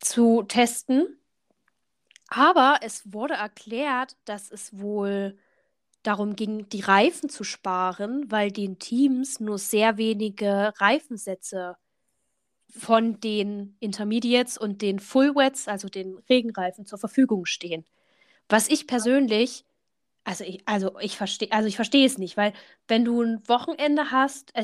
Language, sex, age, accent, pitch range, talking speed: German, female, 10-29, German, 200-250 Hz, 130 wpm